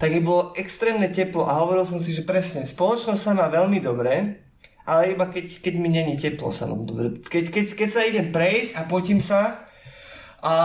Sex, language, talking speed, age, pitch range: male, Slovak, 190 wpm, 20-39, 145-185 Hz